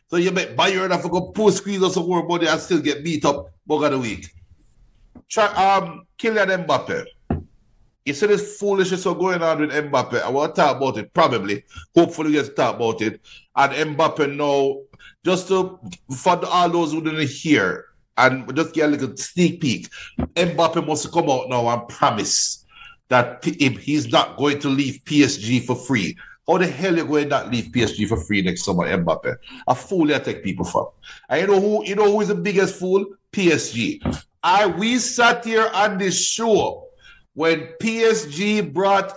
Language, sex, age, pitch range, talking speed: English, male, 60-79, 150-200 Hz, 195 wpm